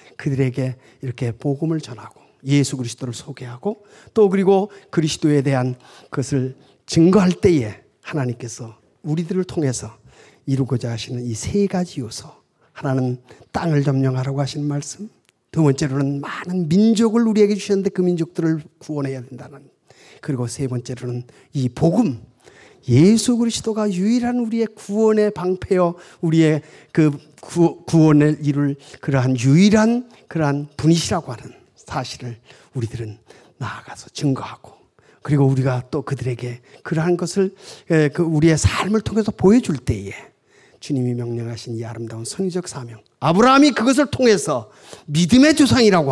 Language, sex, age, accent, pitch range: Korean, male, 40-59, native, 130-195 Hz